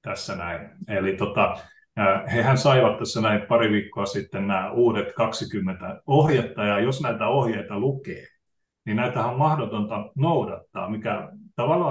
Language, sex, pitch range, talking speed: Finnish, male, 105-135 Hz, 135 wpm